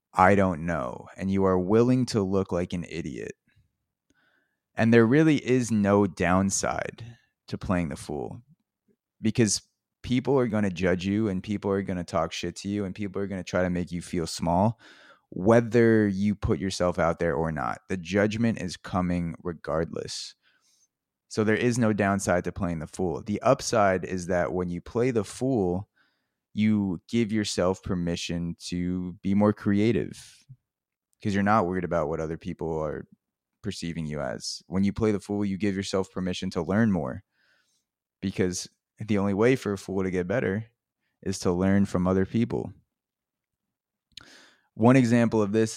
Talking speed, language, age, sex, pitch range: 175 wpm, English, 20-39, male, 90-110 Hz